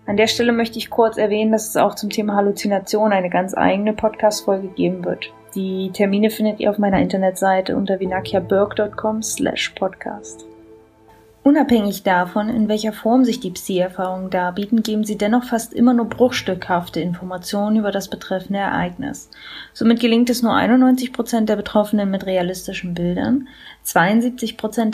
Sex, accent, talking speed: female, German, 150 wpm